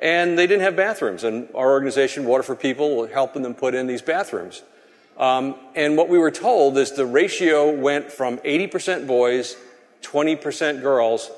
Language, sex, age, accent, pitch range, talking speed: English, male, 40-59, American, 125-175 Hz, 175 wpm